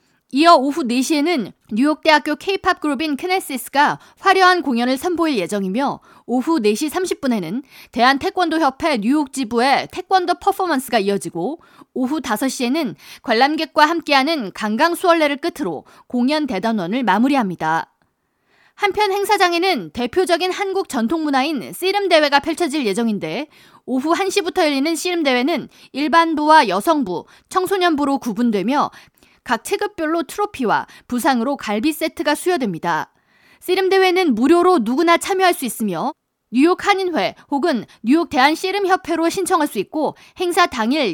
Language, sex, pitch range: Korean, female, 255-350 Hz